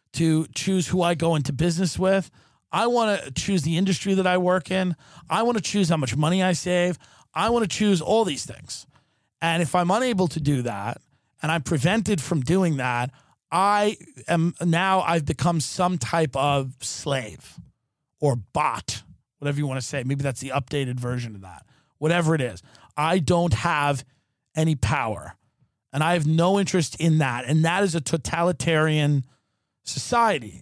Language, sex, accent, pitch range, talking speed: English, male, American, 140-185 Hz, 180 wpm